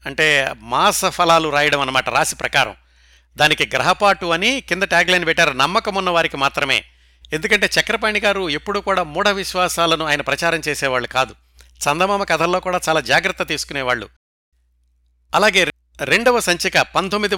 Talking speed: 125 wpm